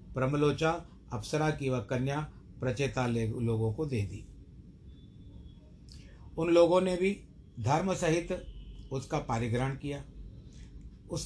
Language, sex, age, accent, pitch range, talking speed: Hindi, male, 60-79, native, 120-155 Hz, 105 wpm